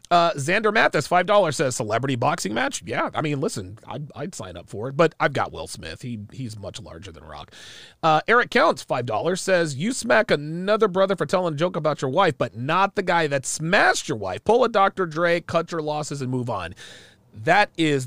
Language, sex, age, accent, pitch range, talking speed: English, male, 30-49, American, 135-195 Hz, 215 wpm